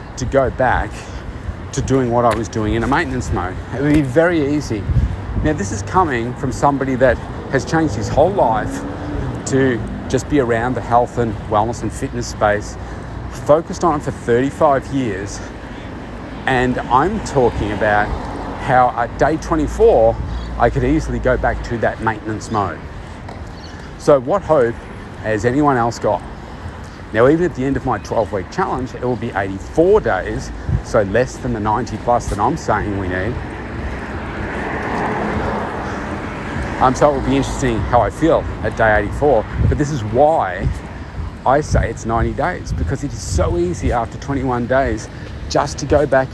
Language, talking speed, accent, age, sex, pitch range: English, 165 wpm, Australian, 40-59, male, 100-130 Hz